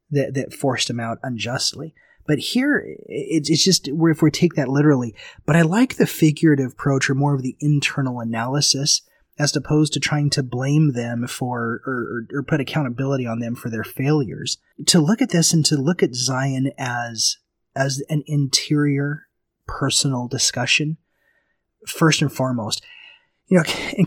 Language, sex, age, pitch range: English, male, 30-49, 130-155 Hz